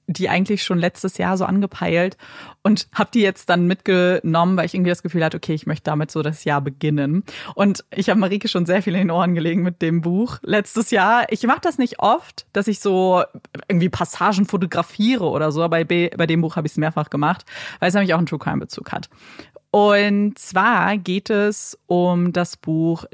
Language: German